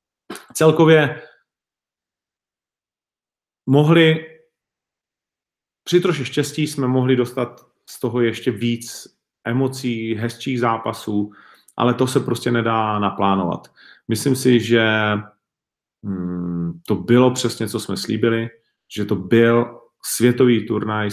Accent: native